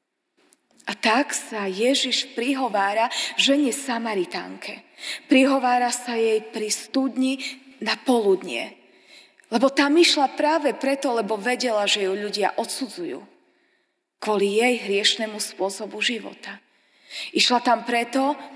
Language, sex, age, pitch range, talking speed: Slovak, female, 20-39, 225-285 Hz, 105 wpm